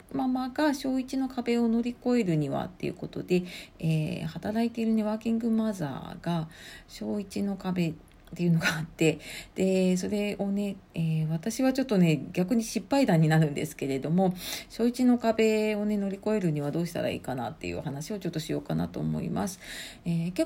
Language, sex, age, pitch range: Japanese, female, 40-59, 160-230 Hz